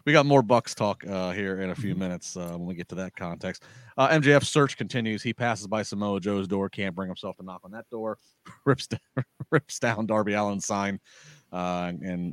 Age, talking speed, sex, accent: 30-49, 215 wpm, male, American